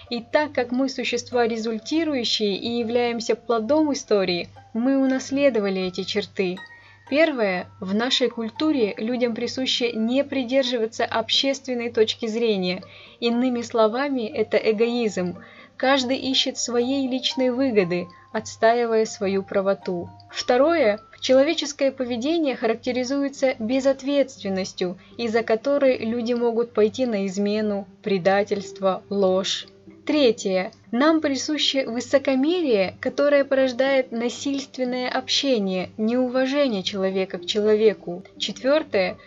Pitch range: 210-265 Hz